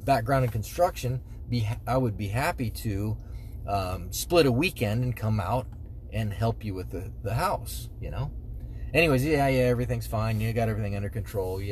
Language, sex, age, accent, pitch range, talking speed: English, male, 30-49, American, 105-130 Hz, 185 wpm